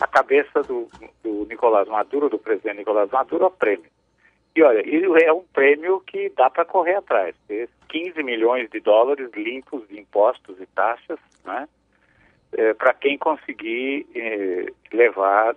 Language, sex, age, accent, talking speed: Portuguese, male, 50-69, Brazilian, 145 wpm